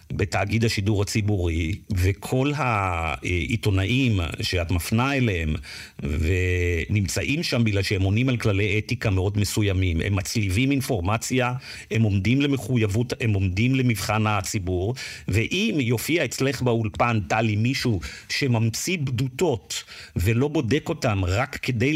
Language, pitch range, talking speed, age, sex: Hebrew, 105-135 Hz, 110 wpm, 50-69, male